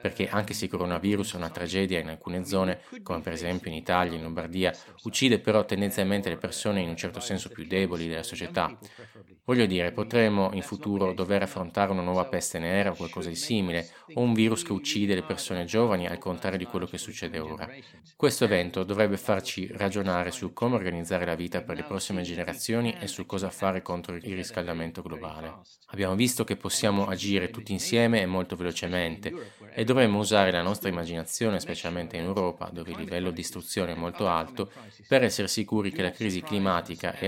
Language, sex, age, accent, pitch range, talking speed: Italian, male, 20-39, native, 90-105 Hz, 190 wpm